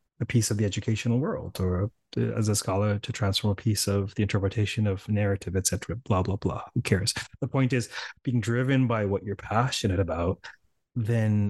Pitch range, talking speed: 100-125 Hz, 185 wpm